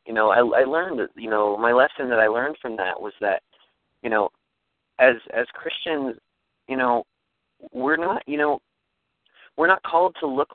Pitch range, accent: 115-140 Hz, American